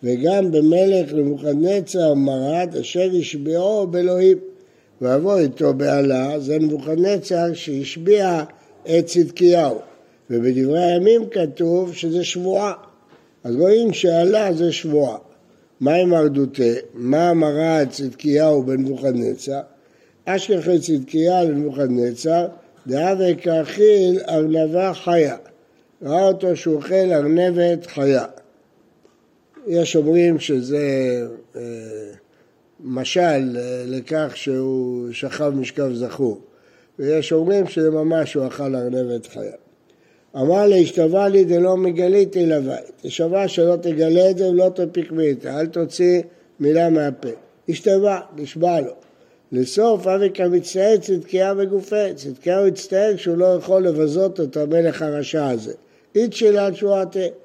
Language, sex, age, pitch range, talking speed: Hebrew, male, 60-79, 145-185 Hz, 105 wpm